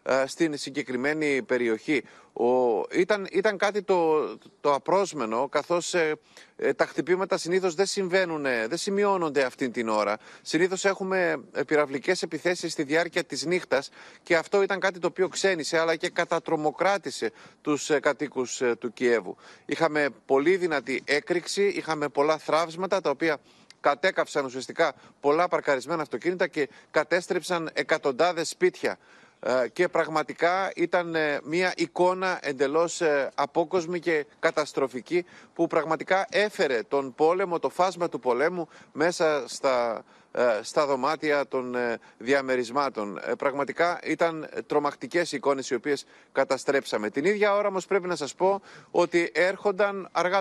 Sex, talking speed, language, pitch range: male, 125 wpm, Greek, 145-185 Hz